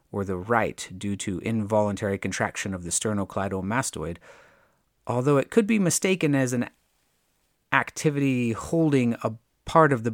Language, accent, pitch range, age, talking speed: English, American, 100-140 Hz, 30-49, 135 wpm